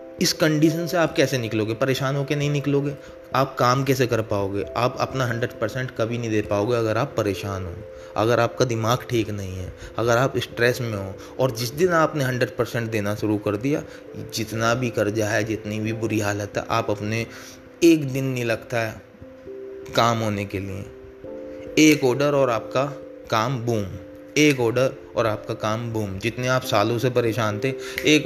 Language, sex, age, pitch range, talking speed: Hindi, male, 20-39, 110-130 Hz, 180 wpm